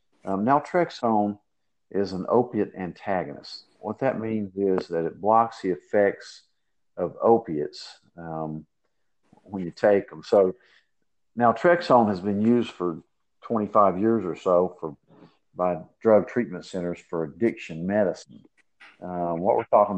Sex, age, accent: male, 50-69, American